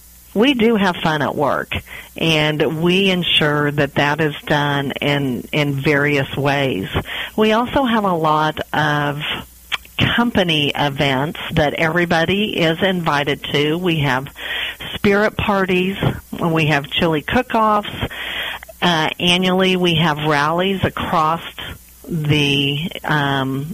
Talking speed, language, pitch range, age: 115 wpm, English, 145-180 Hz, 50-69